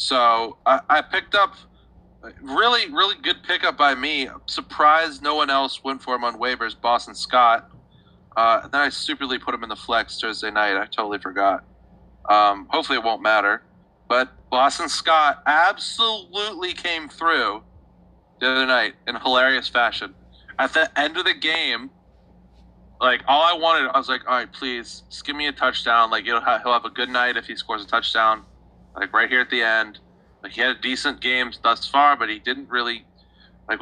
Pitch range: 110-140 Hz